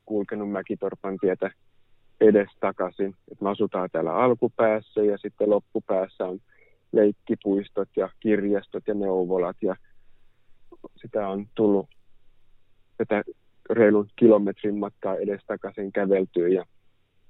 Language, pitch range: Finnish, 95-110 Hz